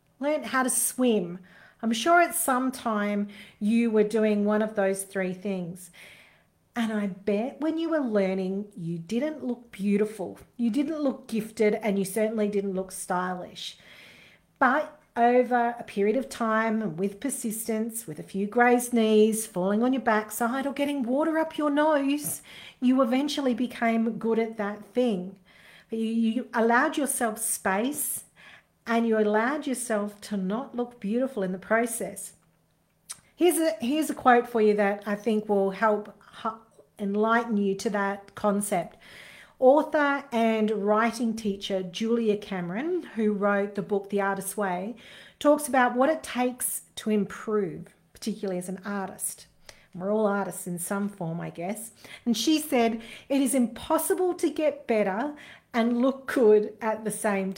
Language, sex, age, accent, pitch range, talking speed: English, female, 40-59, Australian, 200-250 Hz, 155 wpm